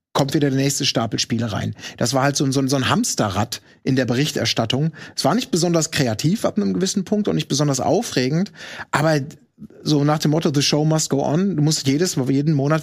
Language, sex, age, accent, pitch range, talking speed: German, male, 30-49, German, 130-165 Hz, 205 wpm